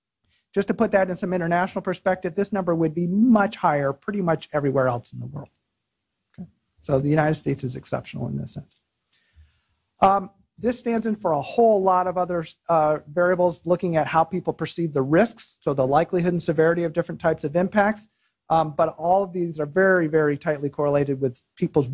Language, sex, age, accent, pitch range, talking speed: English, male, 40-59, American, 150-190 Hz, 195 wpm